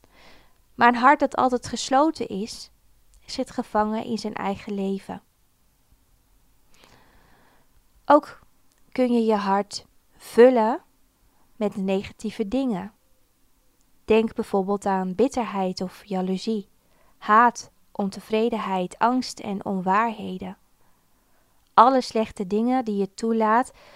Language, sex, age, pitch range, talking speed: Dutch, female, 20-39, 190-235 Hz, 100 wpm